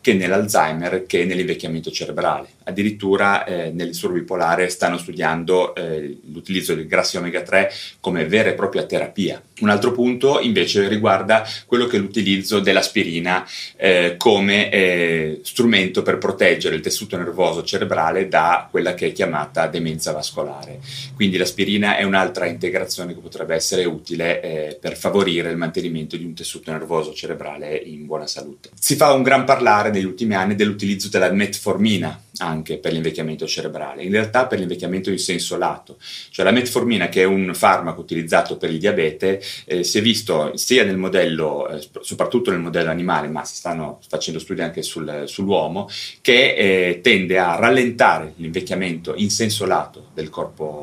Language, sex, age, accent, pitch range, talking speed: Italian, male, 30-49, native, 85-105 Hz, 160 wpm